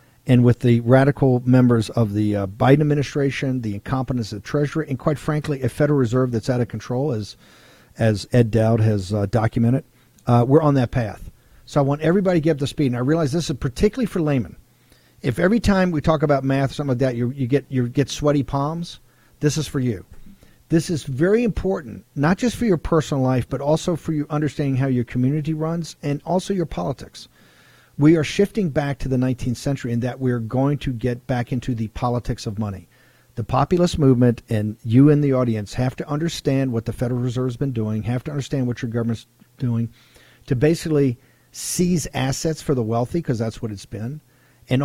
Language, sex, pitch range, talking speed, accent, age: English, male, 120-150 Hz, 210 wpm, American, 50-69